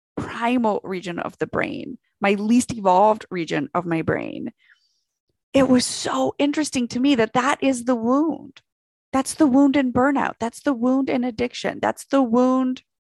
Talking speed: 165 wpm